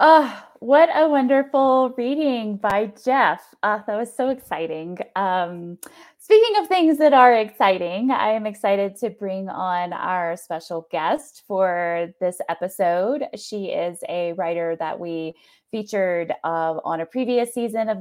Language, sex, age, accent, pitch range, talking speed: English, female, 20-39, American, 175-240 Hz, 145 wpm